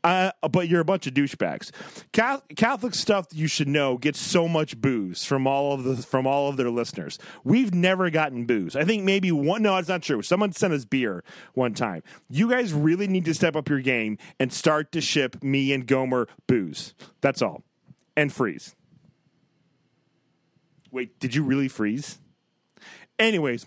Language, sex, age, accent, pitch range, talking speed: English, male, 30-49, American, 135-195 Hz, 175 wpm